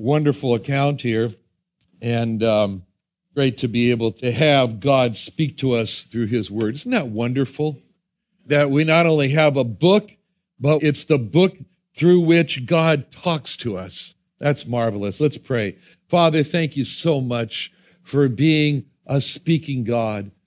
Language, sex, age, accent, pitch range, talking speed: English, male, 60-79, American, 125-170 Hz, 150 wpm